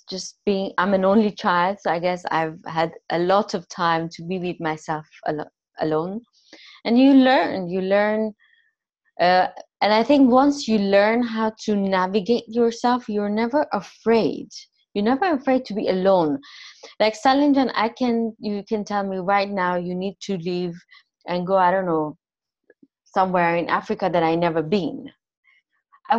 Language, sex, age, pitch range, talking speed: English, female, 20-39, 180-230 Hz, 165 wpm